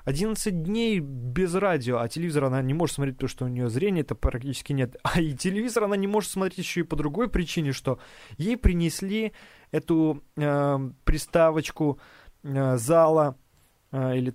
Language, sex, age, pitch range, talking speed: Russian, male, 20-39, 140-185 Hz, 165 wpm